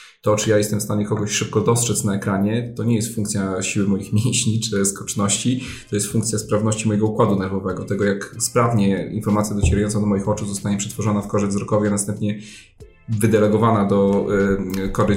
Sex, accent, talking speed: male, native, 180 wpm